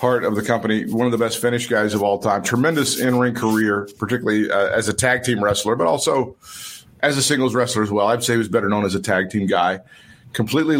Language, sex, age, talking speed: English, male, 50-69, 245 wpm